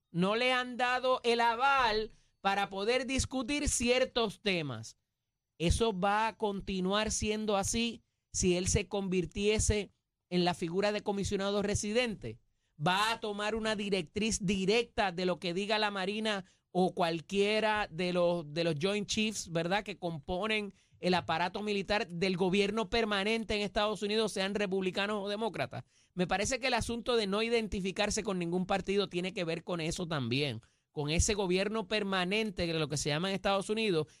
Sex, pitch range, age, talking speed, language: male, 175-215 Hz, 30-49, 160 wpm, Spanish